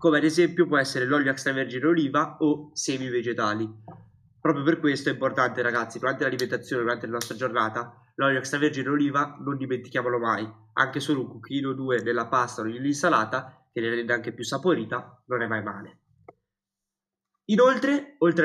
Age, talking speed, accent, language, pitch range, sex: 20-39, 165 wpm, native, Italian, 125-165 Hz, male